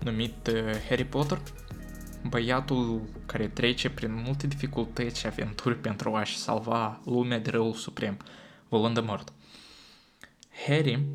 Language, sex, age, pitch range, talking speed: Romanian, male, 20-39, 110-125 Hz, 120 wpm